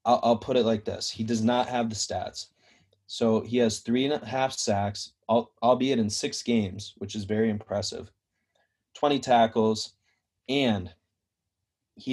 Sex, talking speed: male, 160 wpm